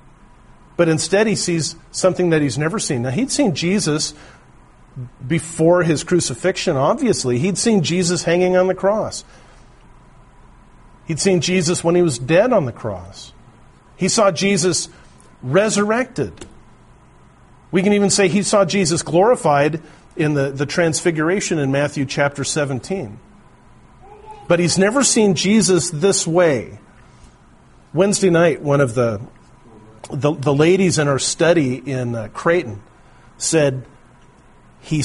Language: English